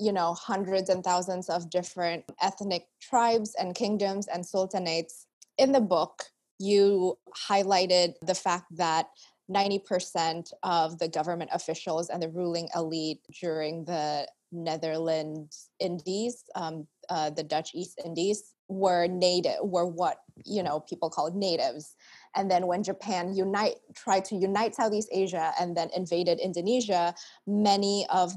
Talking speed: 135 wpm